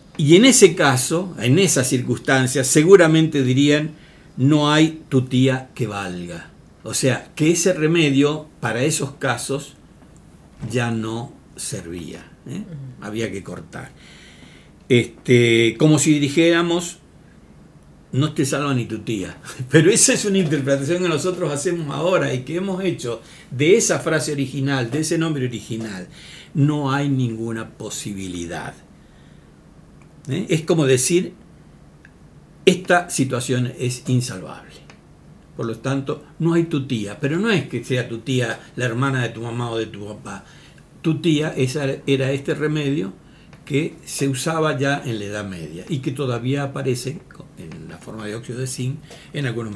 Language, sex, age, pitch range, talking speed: Spanish, male, 60-79, 125-160 Hz, 145 wpm